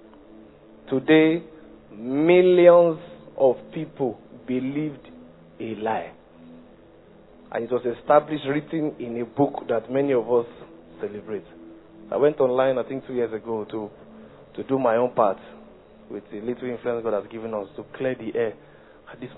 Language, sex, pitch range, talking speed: English, male, 110-150 Hz, 145 wpm